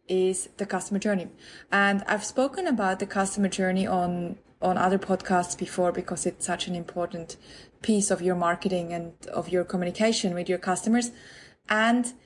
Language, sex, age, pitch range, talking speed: English, female, 20-39, 180-210 Hz, 160 wpm